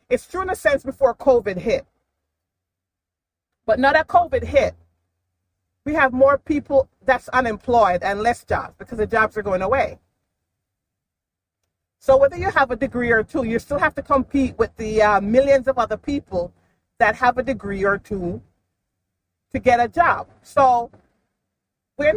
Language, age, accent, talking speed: English, 40-59, American, 160 wpm